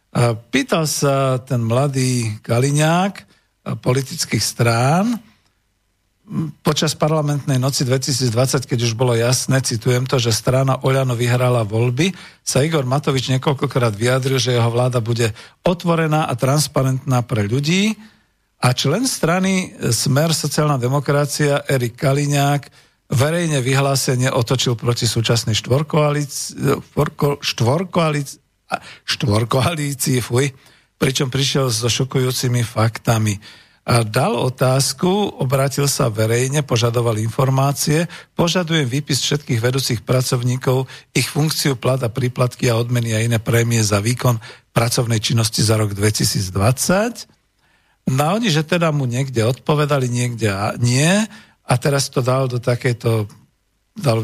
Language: Slovak